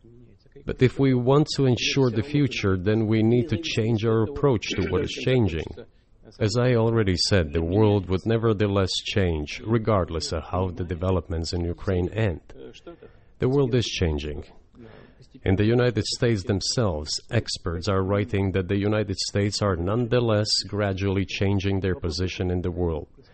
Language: English